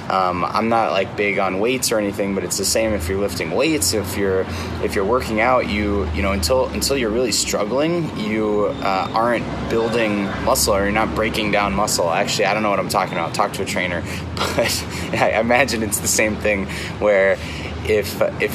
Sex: male